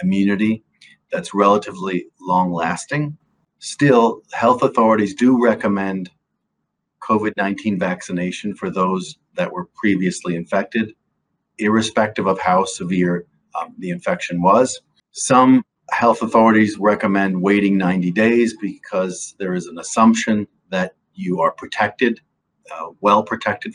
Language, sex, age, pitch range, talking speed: English, male, 40-59, 95-115 Hz, 110 wpm